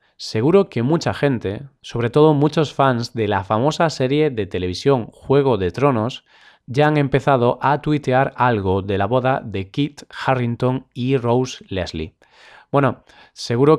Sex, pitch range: male, 115-145 Hz